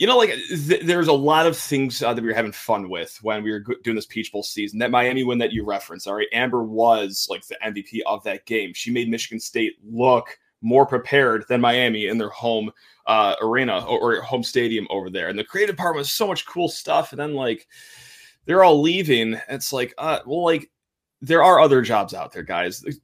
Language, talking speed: English, 230 wpm